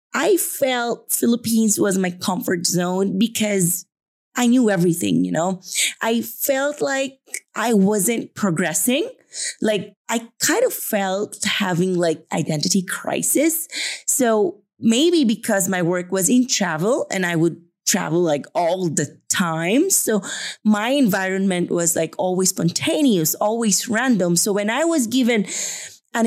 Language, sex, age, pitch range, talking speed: English, female, 30-49, 185-235 Hz, 135 wpm